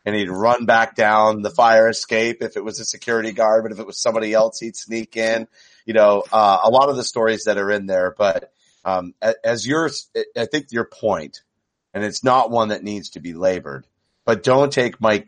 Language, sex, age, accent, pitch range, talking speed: English, male, 30-49, American, 100-115 Hz, 220 wpm